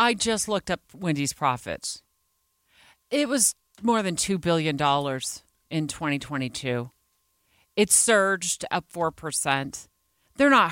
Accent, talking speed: American, 110 wpm